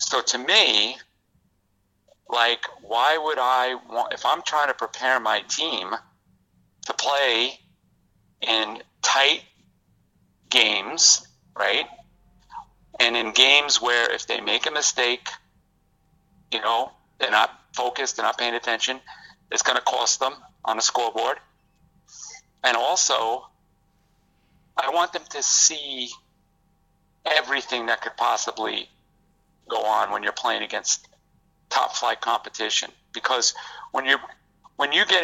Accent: American